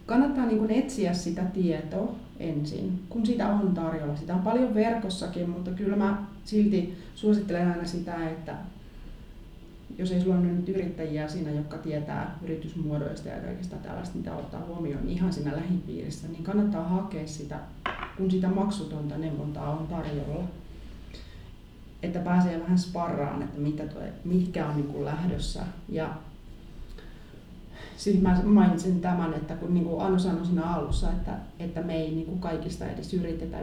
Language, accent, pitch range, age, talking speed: Finnish, native, 160-190 Hz, 30-49, 145 wpm